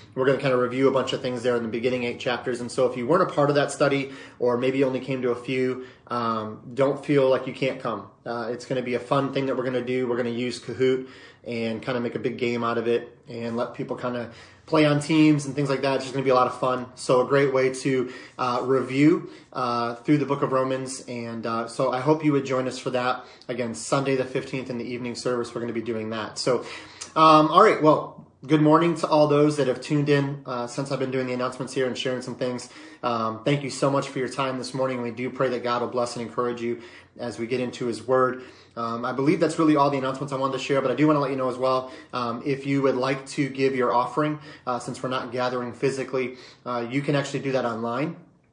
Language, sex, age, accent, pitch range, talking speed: English, male, 30-49, American, 120-140 Hz, 275 wpm